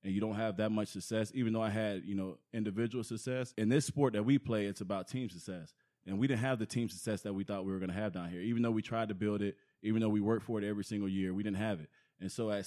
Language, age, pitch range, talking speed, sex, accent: English, 20-39, 100-125 Hz, 310 wpm, male, American